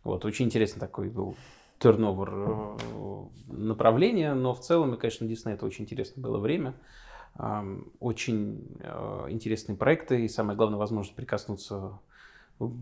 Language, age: Russian, 20-39